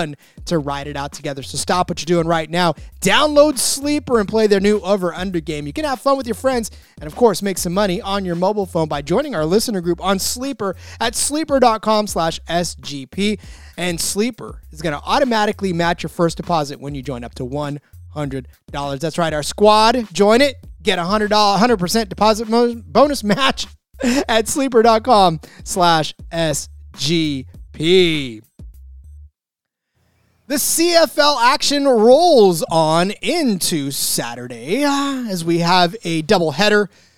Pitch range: 155-220 Hz